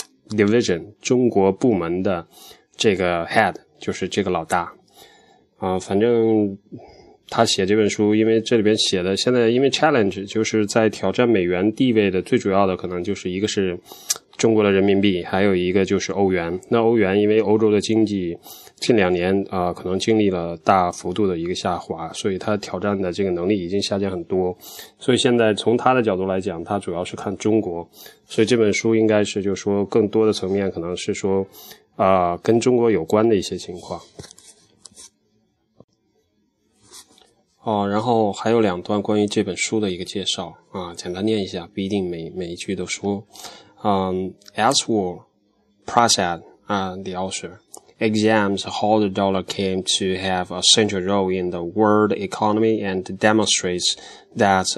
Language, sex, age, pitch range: Chinese, male, 20-39, 95-110 Hz